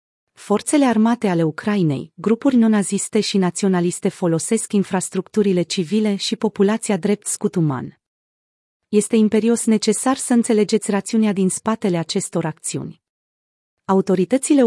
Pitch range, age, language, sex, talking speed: 180-225 Hz, 30-49, Romanian, female, 110 wpm